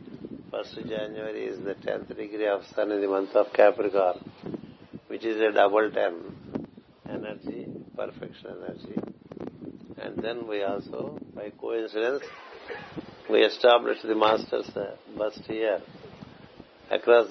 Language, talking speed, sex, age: Telugu, 120 wpm, male, 60-79